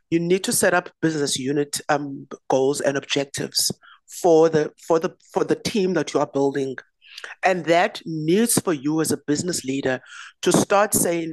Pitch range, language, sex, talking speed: 145-180 Hz, English, female, 180 wpm